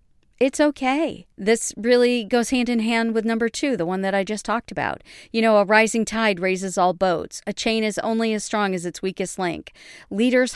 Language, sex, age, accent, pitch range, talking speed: English, female, 40-59, American, 190-235 Hz, 210 wpm